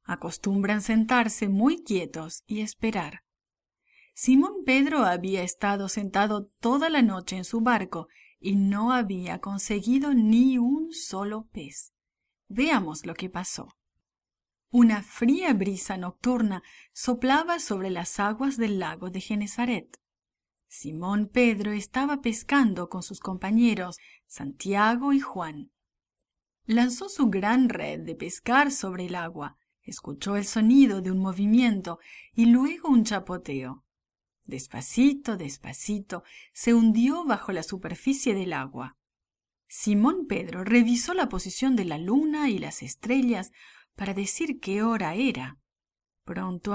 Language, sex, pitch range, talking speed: English, female, 190-250 Hz, 125 wpm